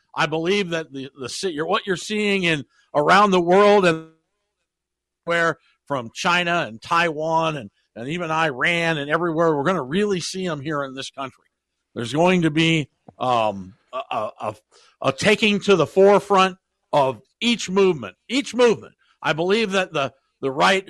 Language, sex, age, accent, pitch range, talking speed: English, male, 60-79, American, 155-190 Hz, 165 wpm